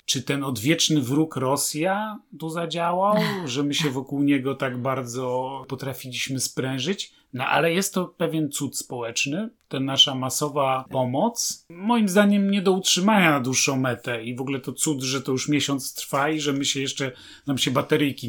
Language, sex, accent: Polish, male, native